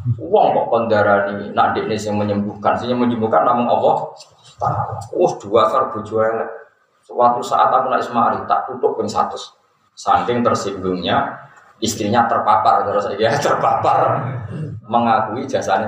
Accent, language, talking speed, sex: native, Indonesian, 135 wpm, male